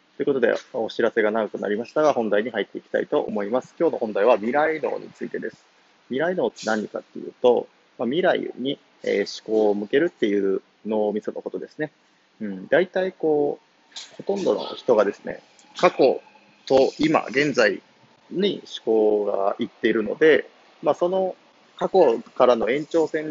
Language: Japanese